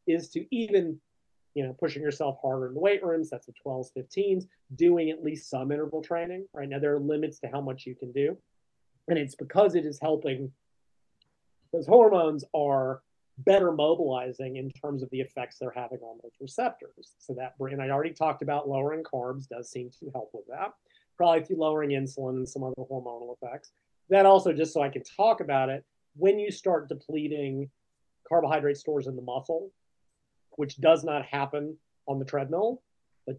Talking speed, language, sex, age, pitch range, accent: 185 wpm, English, male, 30-49, 130-165 Hz, American